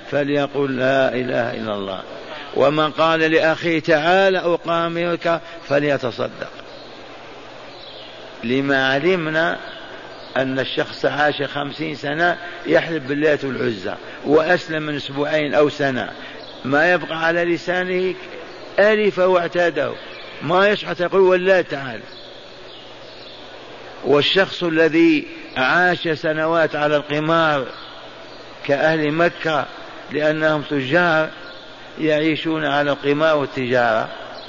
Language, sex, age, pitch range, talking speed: Arabic, male, 50-69, 140-170 Hz, 90 wpm